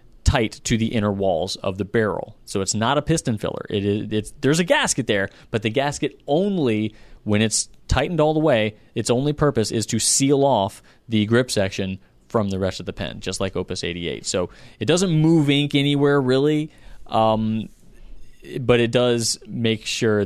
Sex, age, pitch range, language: male, 30-49, 95-115 Hz, English